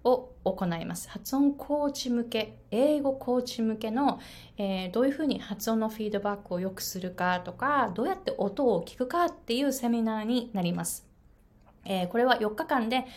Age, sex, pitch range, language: 20-39, female, 210-290 Hz, Japanese